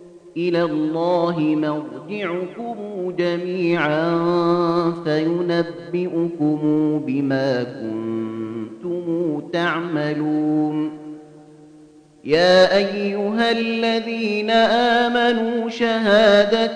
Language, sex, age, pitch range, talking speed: Arabic, male, 30-49, 175-225 Hz, 45 wpm